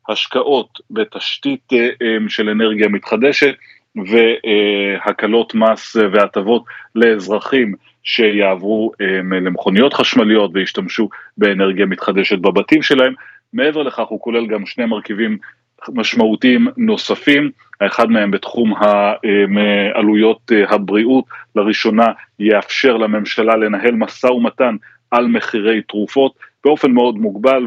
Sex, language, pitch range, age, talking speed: male, Hebrew, 105-120 Hz, 30-49, 95 wpm